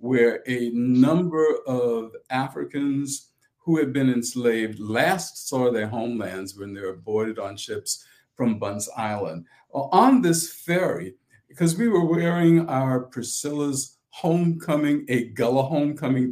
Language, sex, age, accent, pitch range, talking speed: English, male, 50-69, American, 125-170 Hz, 130 wpm